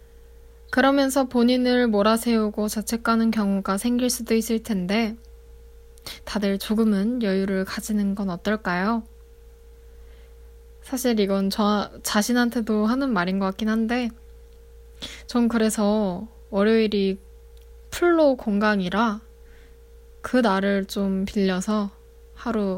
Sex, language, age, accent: female, Korean, 10-29, native